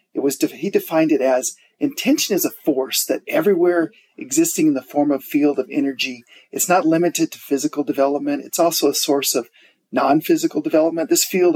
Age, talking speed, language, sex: 40-59, 185 wpm, English, male